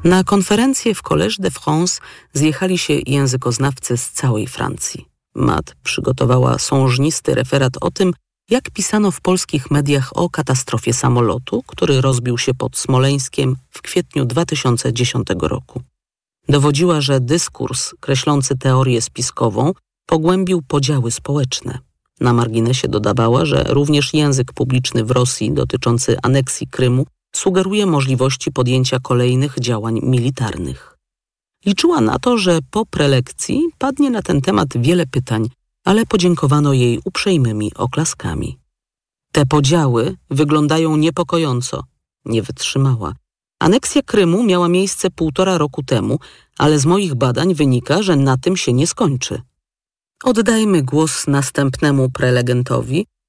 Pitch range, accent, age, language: 125-175 Hz, native, 40-59, Polish